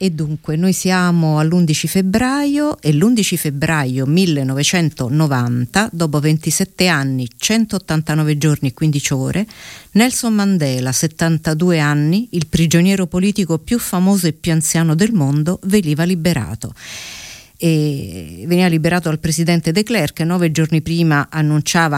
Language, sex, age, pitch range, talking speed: Italian, female, 50-69, 145-180 Hz, 125 wpm